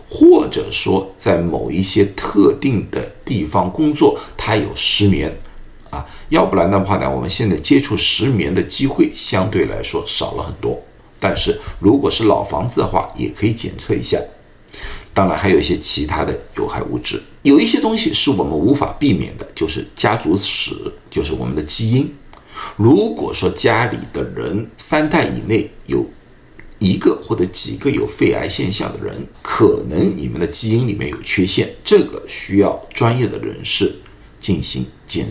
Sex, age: male, 50-69